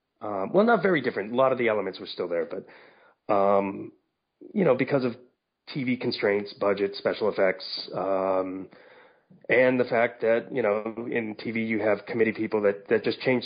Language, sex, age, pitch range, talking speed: English, male, 30-49, 100-140 Hz, 185 wpm